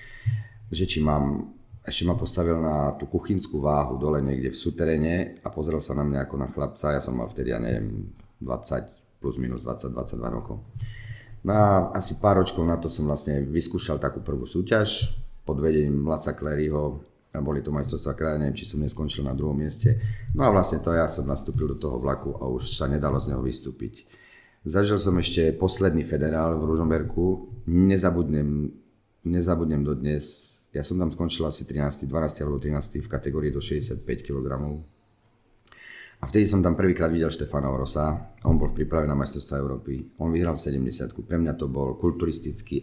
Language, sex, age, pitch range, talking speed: Czech, male, 40-59, 70-95 Hz, 180 wpm